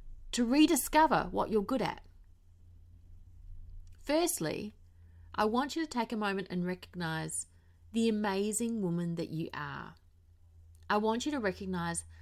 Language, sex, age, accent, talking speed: English, female, 30-49, Australian, 135 wpm